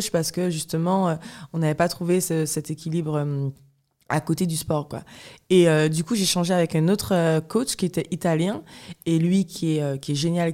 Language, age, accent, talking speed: French, 20-39, French, 215 wpm